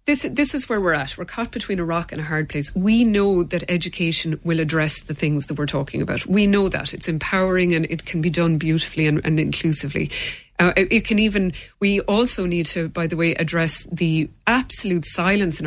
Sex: female